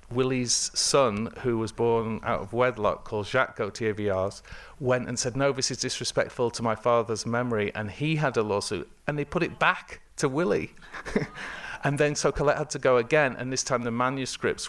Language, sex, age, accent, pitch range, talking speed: English, male, 40-59, British, 115-130 Hz, 195 wpm